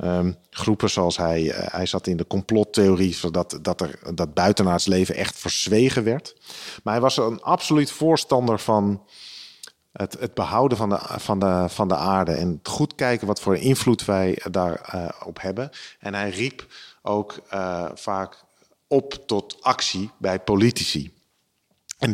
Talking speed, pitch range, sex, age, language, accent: 155 wpm, 95-125 Hz, male, 40-59, Dutch, Dutch